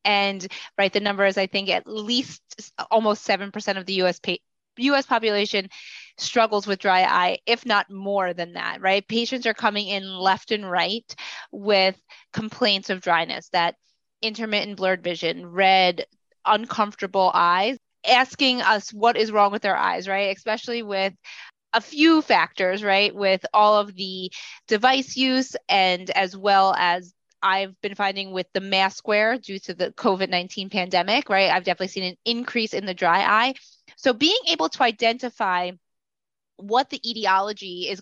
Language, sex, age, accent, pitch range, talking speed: English, female, 20-39, American, 190-235 Hz, 160 wpm